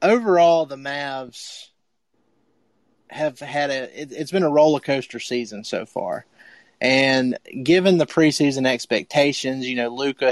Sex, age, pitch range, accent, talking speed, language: male, 30-49, 125-155 Hz, American, 135 wpm, English